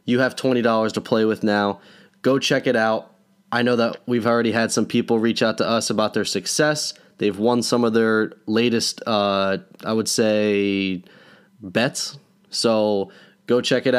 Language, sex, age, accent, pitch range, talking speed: English, male, 20-39, American, 100-120 Hz, 175 wpm